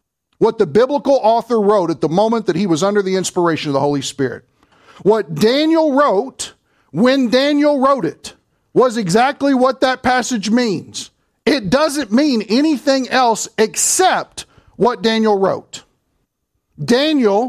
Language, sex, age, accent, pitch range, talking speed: English, male, 40-59, American, 165-255 Hz, 140 wpm